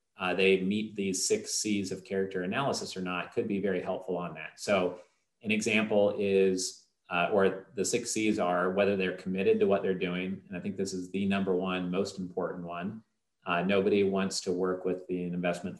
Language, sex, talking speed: English, male, 200 wpm